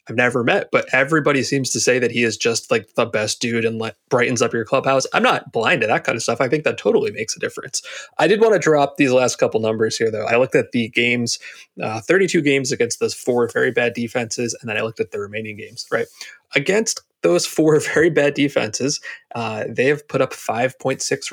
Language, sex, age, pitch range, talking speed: English, male, 30-49, 120-185 Hz, 230 wpm